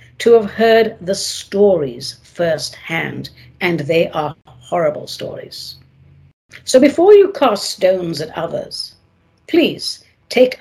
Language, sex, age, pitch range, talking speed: English, female, 60-79, 165-270 Hz, 115 wpm